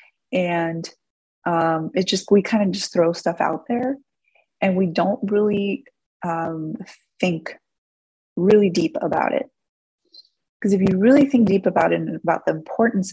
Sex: female